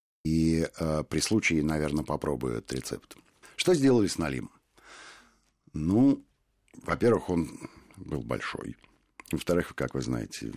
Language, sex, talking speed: Russian, male, 120 wpm